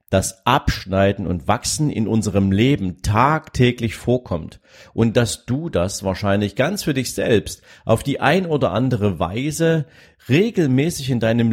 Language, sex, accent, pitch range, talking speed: German, male, German, 95-125 Hz, 140 wpm